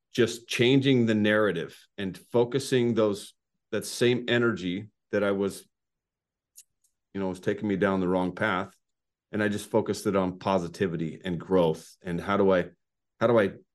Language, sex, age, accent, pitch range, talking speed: English, male, 30-49, American, 110-140 Hz, 165 wpm